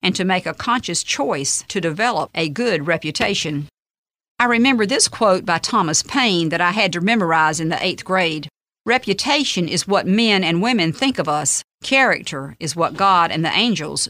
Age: 50-69